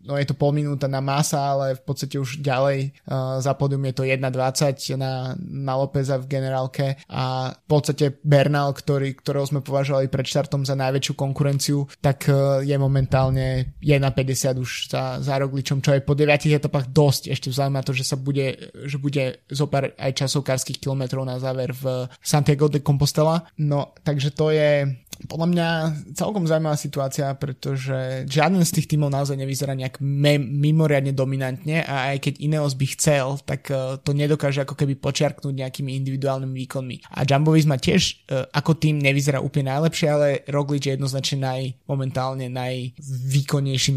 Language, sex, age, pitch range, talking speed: Slovak, male, 20-39, 130-145 Hz, 160 wpm